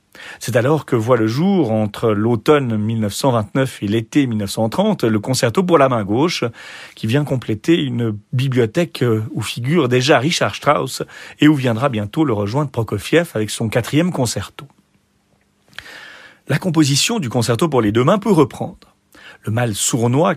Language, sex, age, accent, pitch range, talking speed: French, male, 40-59, French, 115-155 Hz, 155 wpm